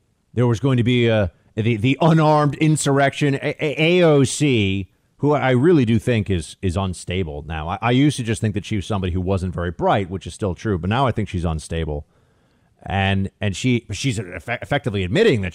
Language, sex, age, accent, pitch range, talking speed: English, male, 30-49, American, 95-125 Hz, 205 wpm